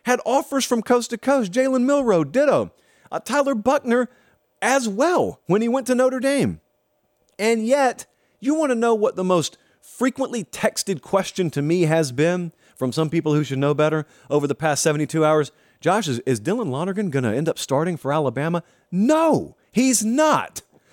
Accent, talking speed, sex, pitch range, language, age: American, 180 wpm, male, 130-210 Hz, English, 40-59